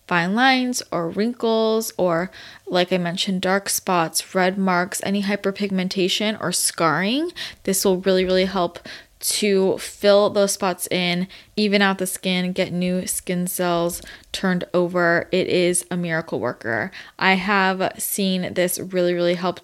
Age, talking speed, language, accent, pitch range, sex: 20-39, 145 wpm, English, American, 175-210 Hz, female